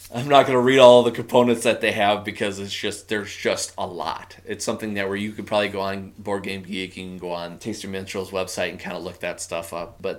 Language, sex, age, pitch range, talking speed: English, male, 20-39, 95-115 Hz, 255 wpm